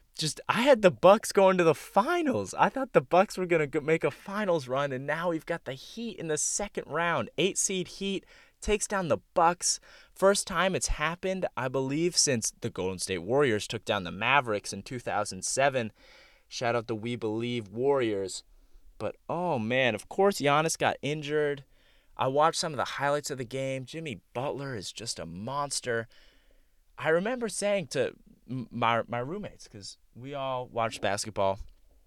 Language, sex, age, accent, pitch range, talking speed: English, male, 20-39, American, 110-175 Hz, 175 wpm